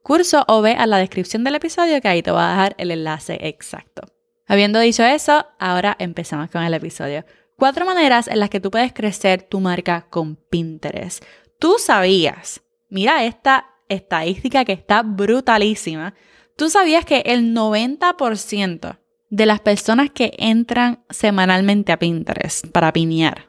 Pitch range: 190-245 Hz